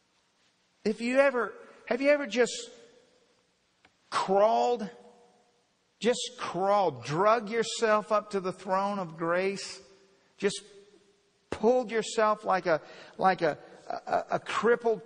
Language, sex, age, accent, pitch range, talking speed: English, male, 50-69, American, 160-200 Hz, 110 wpm